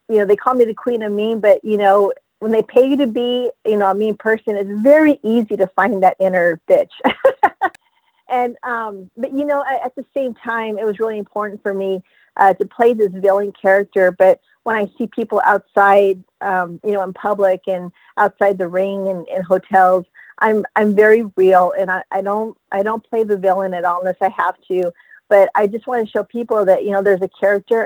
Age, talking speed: 40-59, 220 wpm